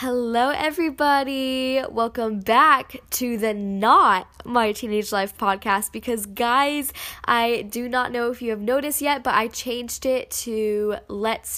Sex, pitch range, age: female, 210-250 Hz, 10-29